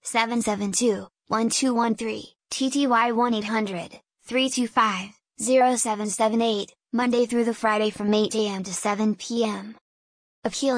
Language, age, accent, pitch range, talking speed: English, 10-29, American, 210-240 Hz, 85 wpm